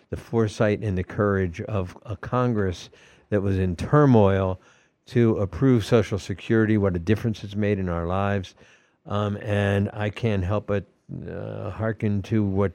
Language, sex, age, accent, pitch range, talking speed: English, male, 60-79, American, 95-115 Hz, 160 wpm